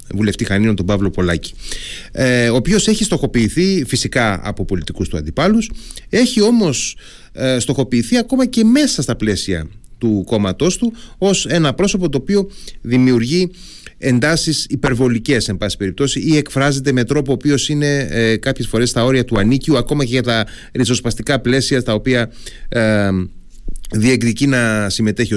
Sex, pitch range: male, 105-150 Hz